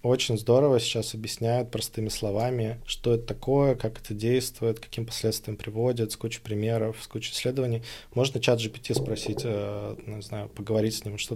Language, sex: Russian, male